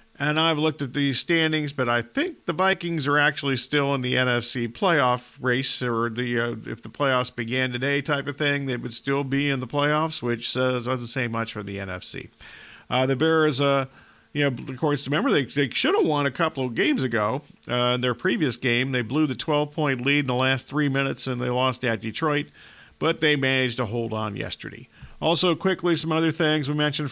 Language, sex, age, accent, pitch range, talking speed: English, male, 50-69, American, 125-155 Hz, 220 wpm